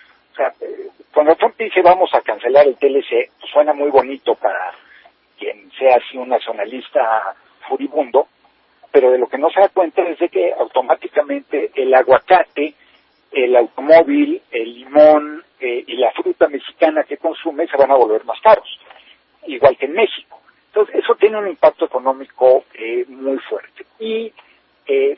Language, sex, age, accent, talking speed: Spanish, male, 50-69, Mexican, 155 wpm